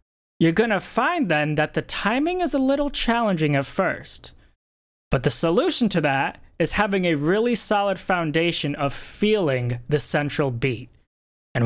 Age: 20-39